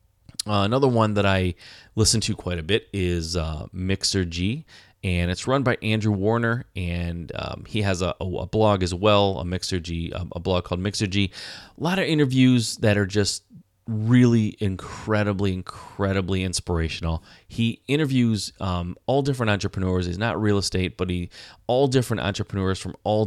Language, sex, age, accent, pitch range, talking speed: English, male, 30-49, American, 90-115 Hz, 175 wpm